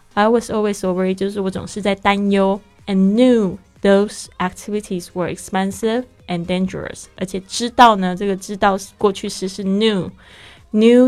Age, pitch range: 20-39, 185-210 Hz